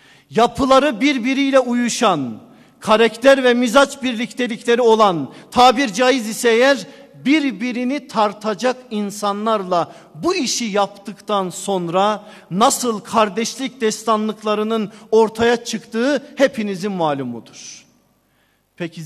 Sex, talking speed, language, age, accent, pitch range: male, 85 wpm, Turkish, 50-69, native, 150-245 Hz